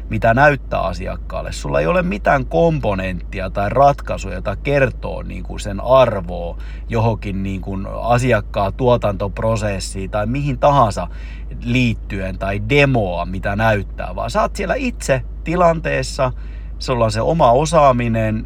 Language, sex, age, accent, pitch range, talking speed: Finnish, male, 30-49, native, 100-130 Hz, 115 wpm